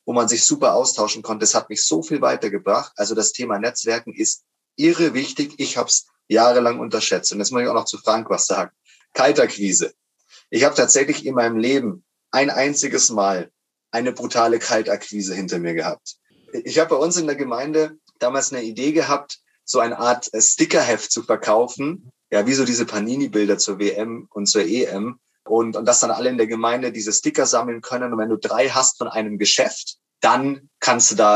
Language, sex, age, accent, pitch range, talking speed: German, male, 30-49, German, 105-140 Hz, 195 wpm